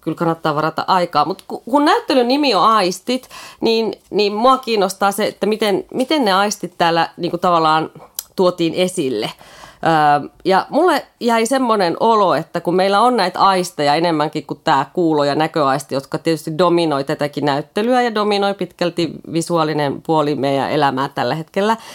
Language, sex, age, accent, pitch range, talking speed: Finnish, female, 30-49, native, 160-220 Hz, 155 wpm